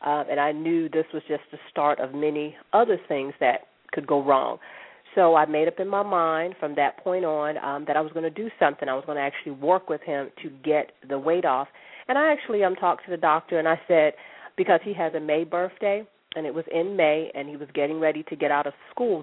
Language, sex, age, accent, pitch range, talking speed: English, female, 40-59, American, 150-185 Hz, 255 wpm